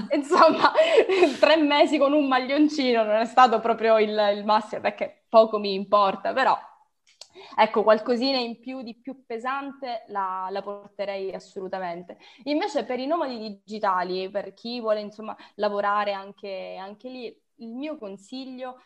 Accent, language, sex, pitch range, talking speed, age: native, Italian, female, 200-250 Hz, 145 wpm, 20-39